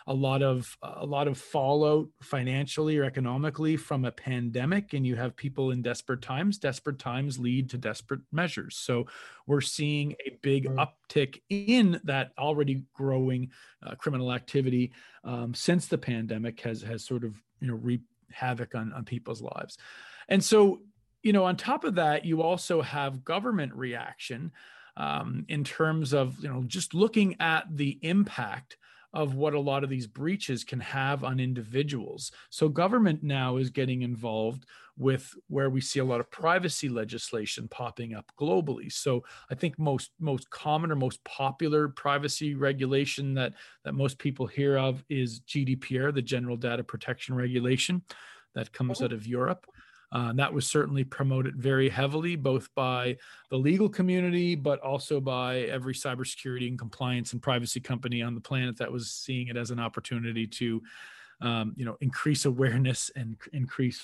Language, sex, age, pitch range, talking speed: English, male, 40-59, 125-150 Hz, 165 wpm